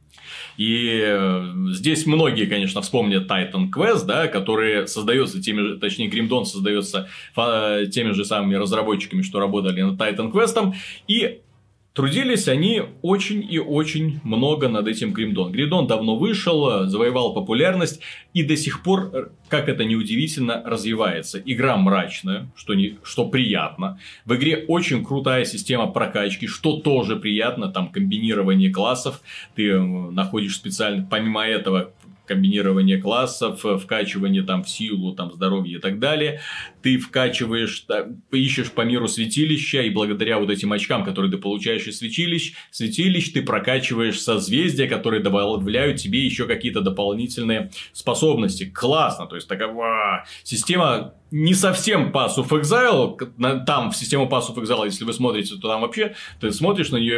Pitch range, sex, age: 105-165 Hz, male, 30-49